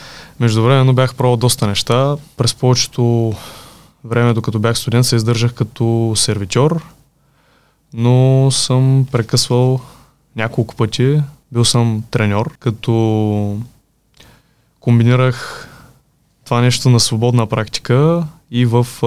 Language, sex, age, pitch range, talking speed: Bulgarian, male, 20-39, 110-135 Hz, 105 wpm